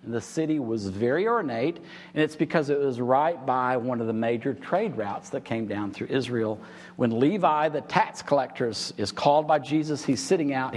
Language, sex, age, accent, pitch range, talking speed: English, male, 50-69, American, 125-180 Hz, 195 wpm